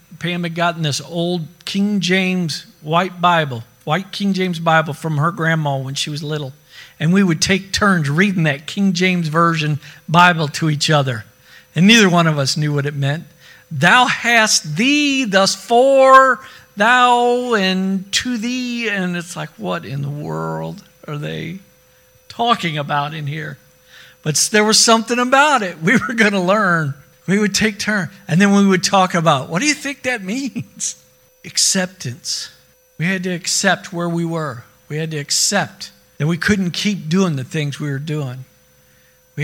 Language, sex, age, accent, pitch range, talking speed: English, male, 50-69, American, 150-205 Hz, 175 wpm